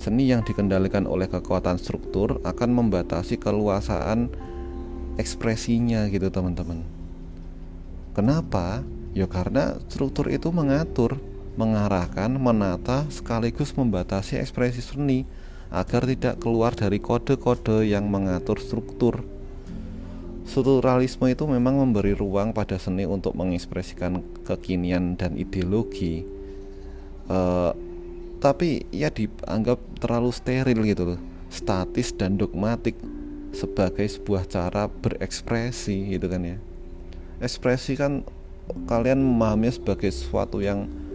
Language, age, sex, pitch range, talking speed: Indonesian, 30-49, male, 90-120 Hz, 105 wpm